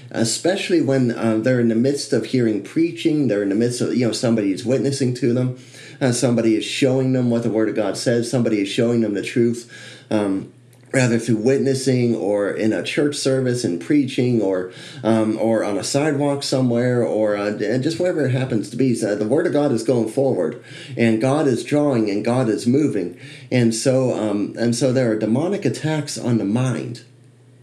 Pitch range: 115-135 Hz